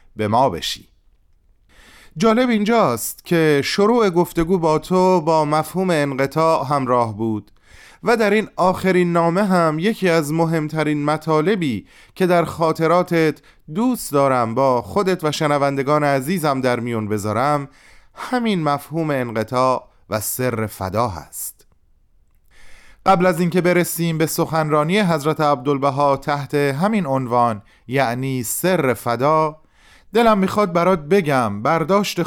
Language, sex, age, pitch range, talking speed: Persian, male, 30-49, 125-170 Hz, 120 wpm